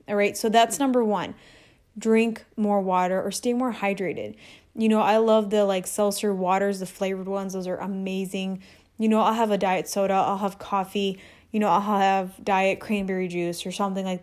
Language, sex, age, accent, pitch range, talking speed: English, female, 20-39, American, 195-230 Hz, 200 wpm